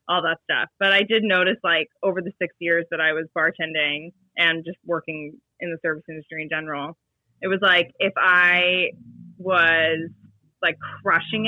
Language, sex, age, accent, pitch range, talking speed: English, female, 20-39, American, 160-185 Hz, 175 wpm